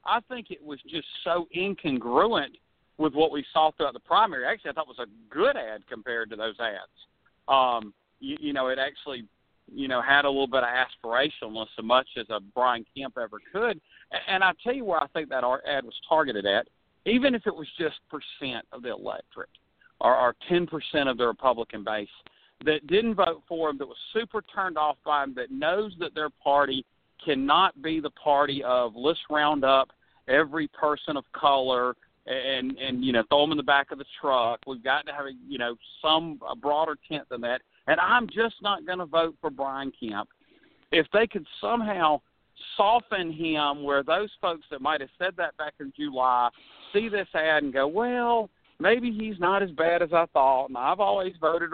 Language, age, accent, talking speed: English, 50-69, American, 205 wpm